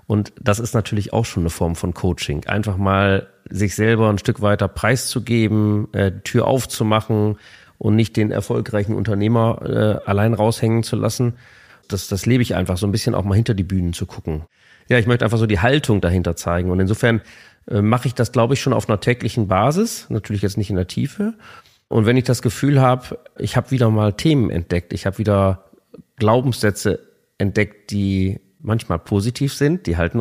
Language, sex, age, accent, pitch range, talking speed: German, male, 30-49, German, 100-120 Hz, 190 wpm